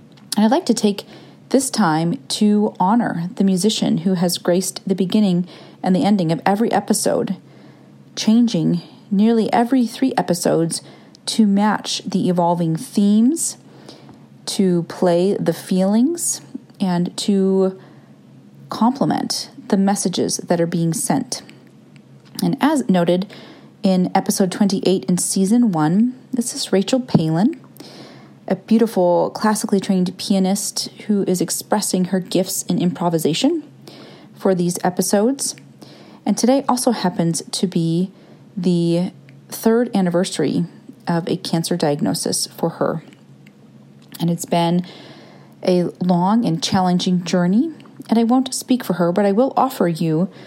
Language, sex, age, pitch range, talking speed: English, female, 30-49, 180-225 Hz, 125 wpm